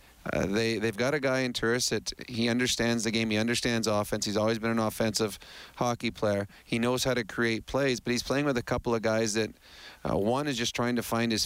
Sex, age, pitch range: male, 30-49, 110-130 Hz